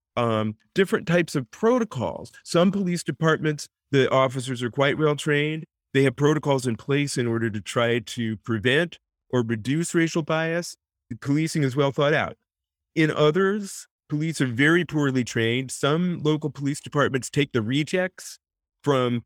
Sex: male